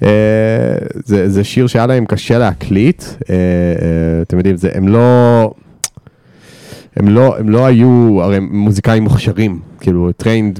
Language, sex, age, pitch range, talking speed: Hebrew, male, 20-39, 95-120 Hz, 145 wpm